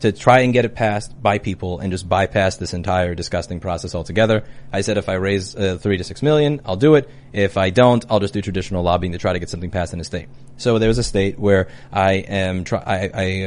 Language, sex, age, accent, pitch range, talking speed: English, male, 30-49, American, 100-140 Hz, 255 wpm